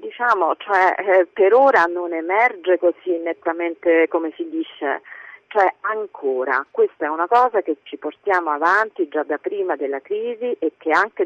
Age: 40-59